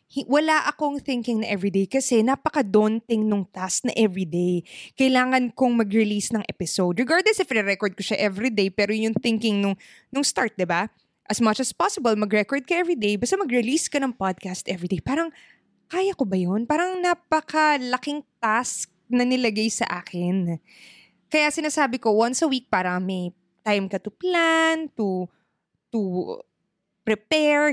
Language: Filipino